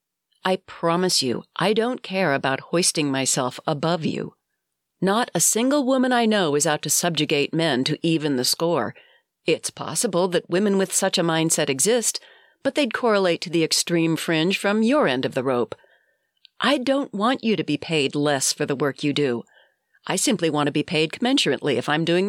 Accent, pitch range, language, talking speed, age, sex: American, 155-215 Hz, English, 190 wpm, 50-69, female